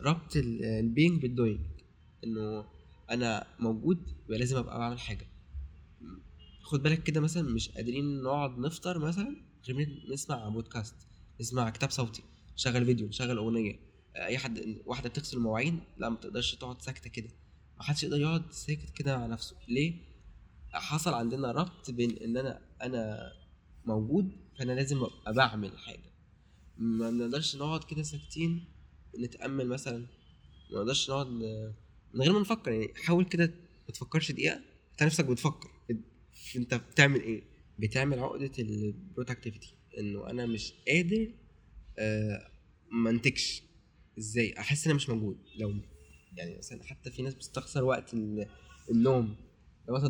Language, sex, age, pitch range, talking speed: Arabic, male, 20-39, 105-140 Hz, 140 wpm